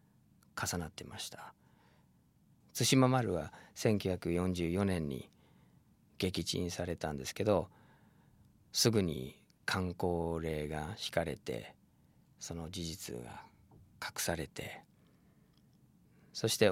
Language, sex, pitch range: Japanese, male, 85-110 Hz